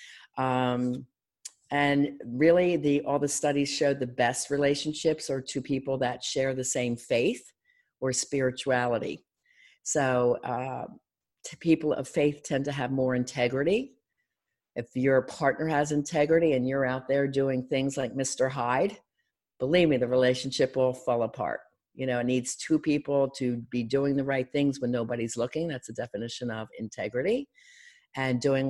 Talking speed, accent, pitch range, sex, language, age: 155 wpm, American, 125-145 Hz, female, English, 50-69